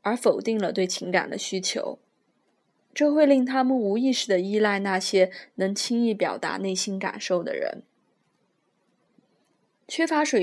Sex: female